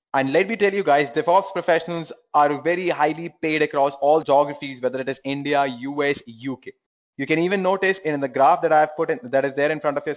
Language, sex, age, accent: English, male, 20-39, Indian